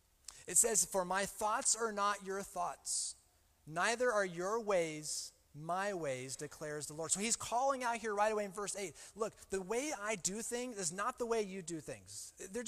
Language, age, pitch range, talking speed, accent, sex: English, 30-49, 135-215 Hz, 200 wpm, American, male